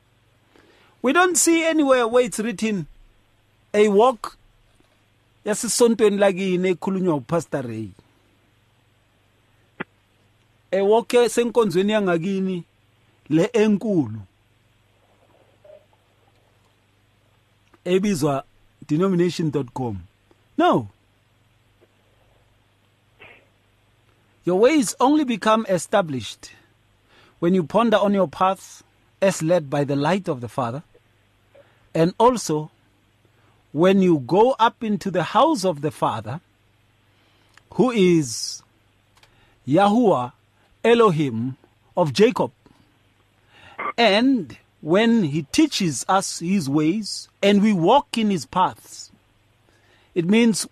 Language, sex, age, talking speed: English, male, 50-69, 90 wpm